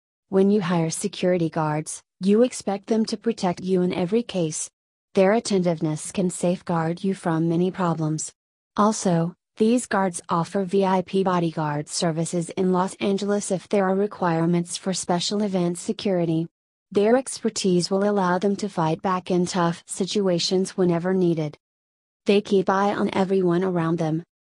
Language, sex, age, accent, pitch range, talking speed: English, female, 30-49, American, 175-200 Hz, 145 wpm